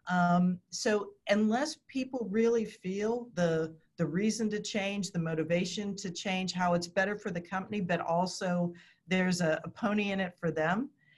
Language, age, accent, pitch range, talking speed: English, 50-69, American, 175-210 Hz, 165 wpm